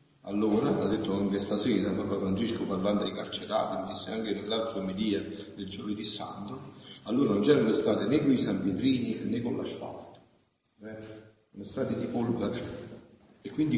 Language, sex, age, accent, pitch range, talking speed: Italian, male, 40-59, native, 95-125 Hz, 170 wpm